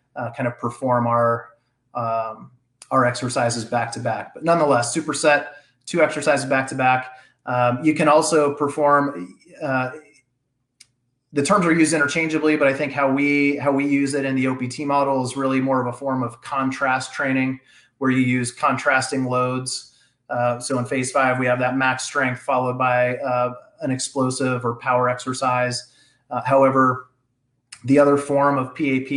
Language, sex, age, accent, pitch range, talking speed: English, male, 30-49, American, 125-140 Hz, 165 wpm